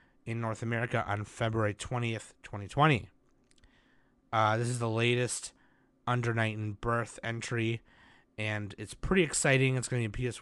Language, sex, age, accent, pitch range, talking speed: English, male, 30-49, American, 105-130 Hz, 150 wpm